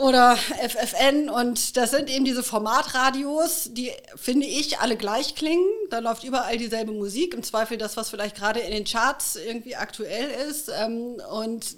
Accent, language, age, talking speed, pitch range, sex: German, German, 40-59, 165 wpm, 215-260 Hz, female